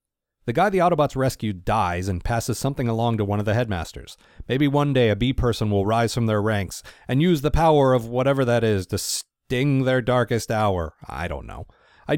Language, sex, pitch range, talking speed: English, male, 100-145 Hz, 210 wpm